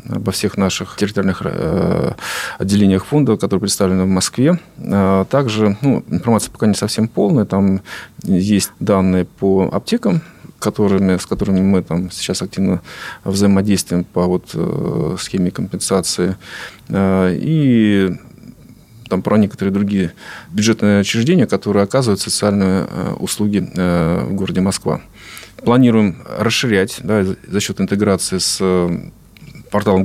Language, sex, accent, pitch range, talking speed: Russian, male, native, 95-105 Hz, 100 wpm